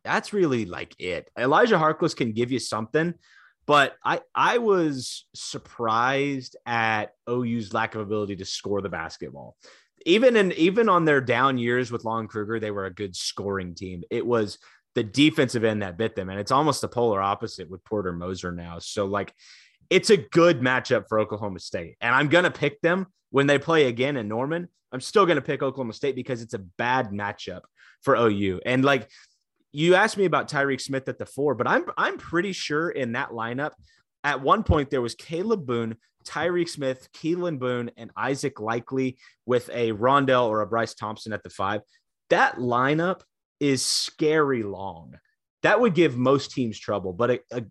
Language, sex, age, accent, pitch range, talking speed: English, male, 30-49, American, 105-145 Hz, 190 wpm